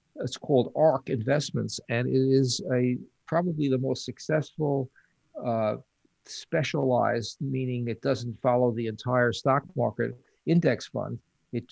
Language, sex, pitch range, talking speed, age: English, male, 120-140 Hz, 130 wpm, 50-69